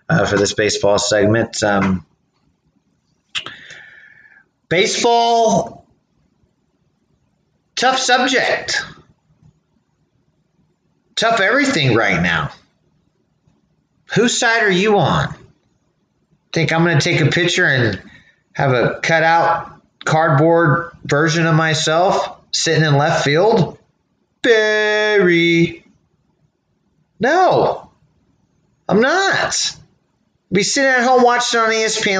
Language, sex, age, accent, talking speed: English, male, 30-49, American, 90 wpm